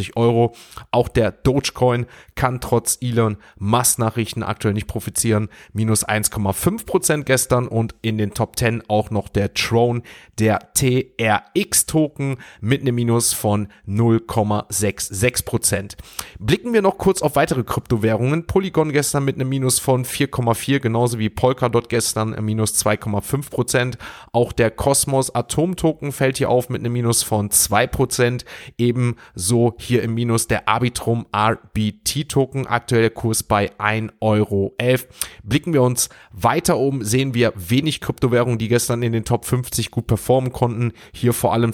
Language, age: German, 30-49